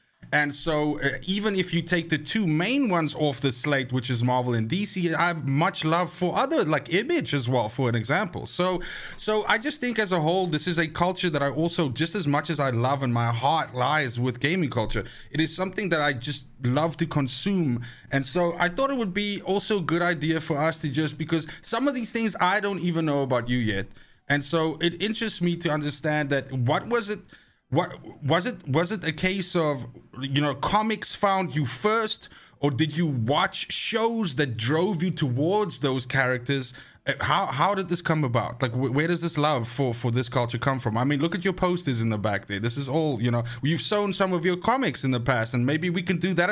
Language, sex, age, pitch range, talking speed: English, male, 30-49, 135-180 Hz, 230 wpm